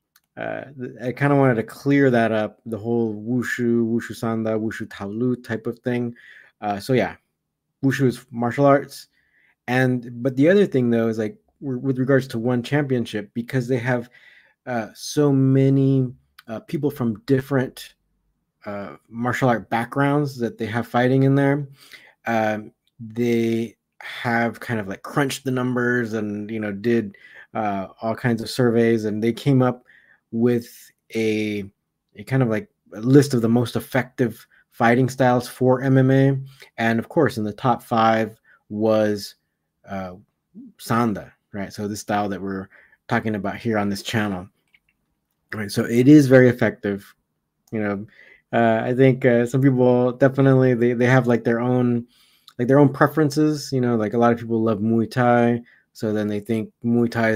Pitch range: 110-130 Hz